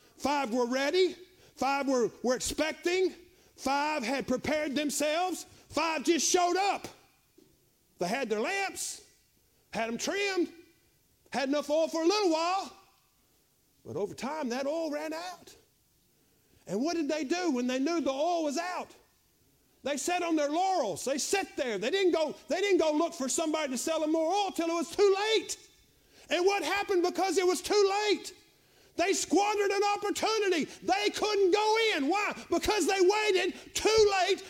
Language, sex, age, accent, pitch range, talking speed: English, male, 50-69, American, 285-370 Hz, 170 wpm